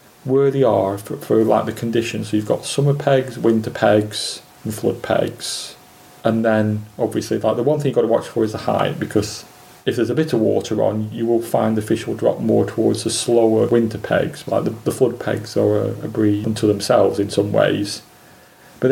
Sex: male